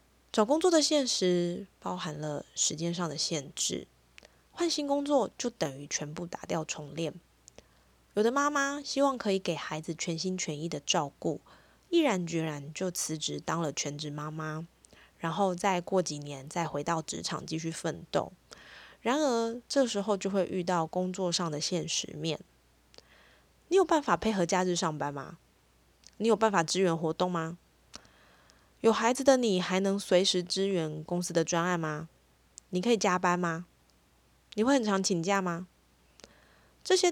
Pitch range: 160-215 Hz